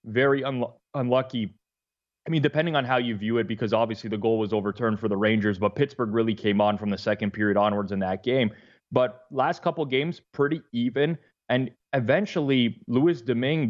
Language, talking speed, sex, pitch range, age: English, 190 wpm, male, 105-125 Hz, 20-39